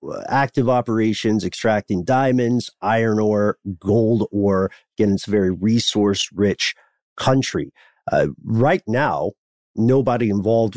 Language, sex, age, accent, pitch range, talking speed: English, male, 50-69, American, 100-125 Hz, 105 wpm